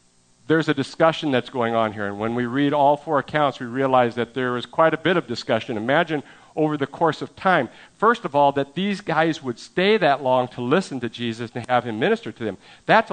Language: English